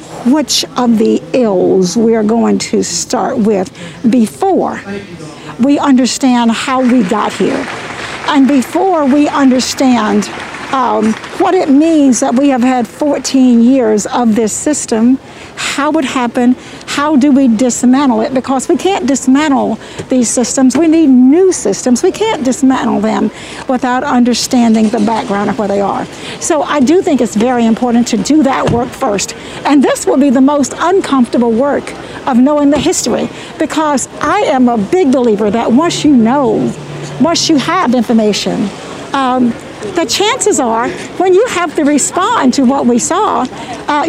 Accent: American